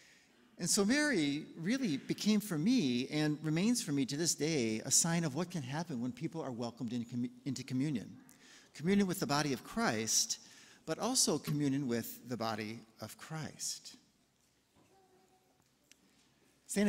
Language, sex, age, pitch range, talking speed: English, male, 50-69, 125-200 Hz, 150 wpm